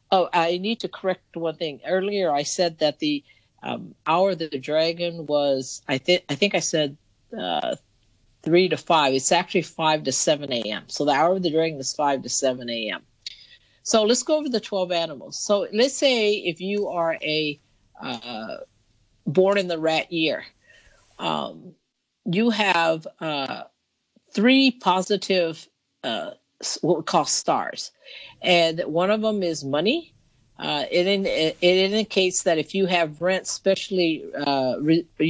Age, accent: 50-69, American